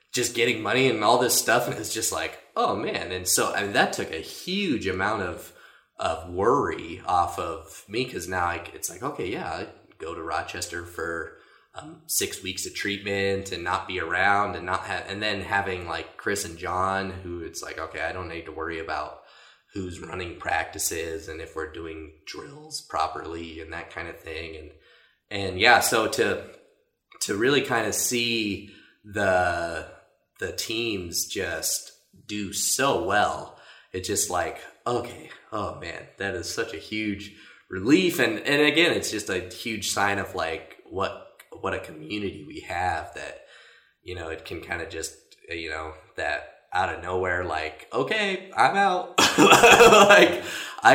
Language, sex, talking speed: English, male, 170 wpm